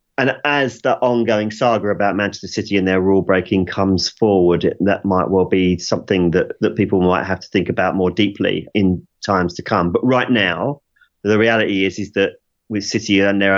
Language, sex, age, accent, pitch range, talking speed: English, male, 30-49, British, 95-110 Hz, 200 wpm